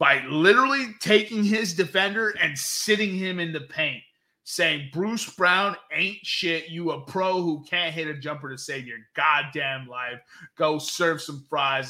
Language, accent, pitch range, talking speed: English, American, 135-180 Hz, 165 wpm